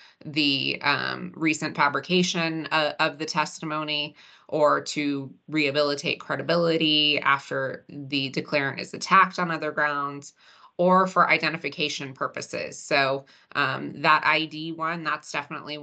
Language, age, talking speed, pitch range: English, 20-39, 120 wpm, 140-155 Hz